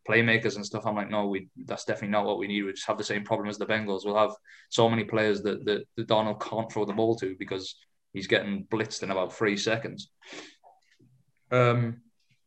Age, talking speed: 20-39, 215 wpm